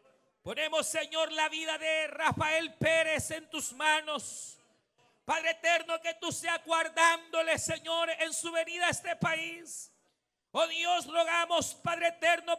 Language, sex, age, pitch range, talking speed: Spanish, male, 50-69, 315-350 Hz, 135 wpm